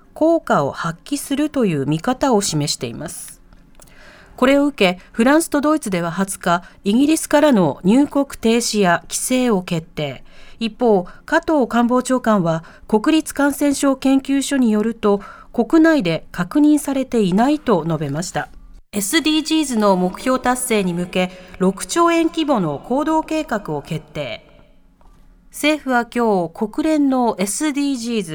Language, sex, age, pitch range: Japanese, female, 40-59, 195-295 Hz